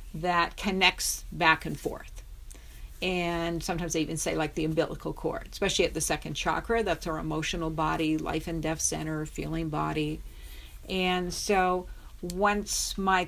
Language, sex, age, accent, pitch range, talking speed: English, female, 50-69, American, 160-185 Hz, 150 wpm